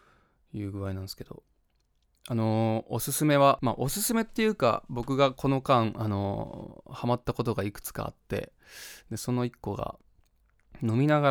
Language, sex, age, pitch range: Japanese, male, 20-39, 100-135 Hz